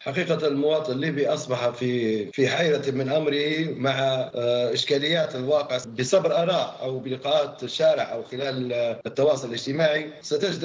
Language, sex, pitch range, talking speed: English, male, 135-165 Hz, 120 wpm